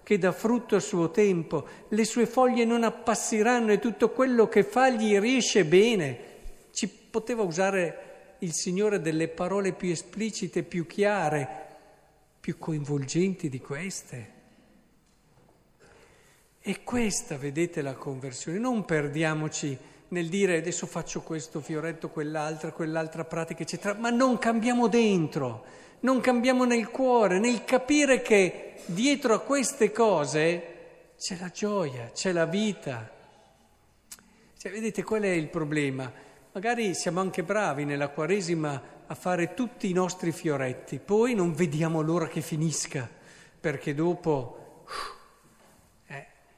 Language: Italian